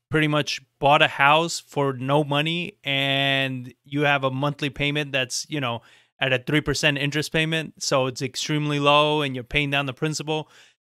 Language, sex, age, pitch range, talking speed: English, male, 30-49, 135-165 Hz, 175 wpm